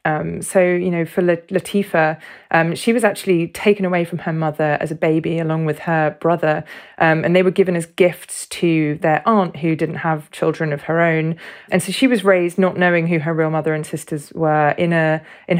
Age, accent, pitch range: 20-39, British, 155-180 Hz